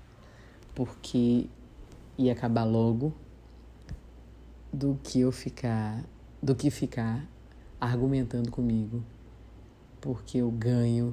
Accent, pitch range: Brazilian, 110-125 Hz